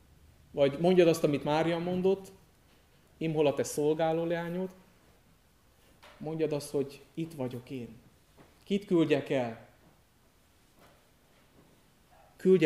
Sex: male